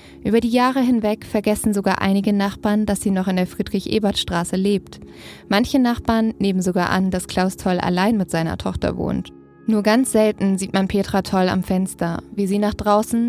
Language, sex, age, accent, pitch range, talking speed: German, female, 20-39, German, 180-210 Hz, 185 wpm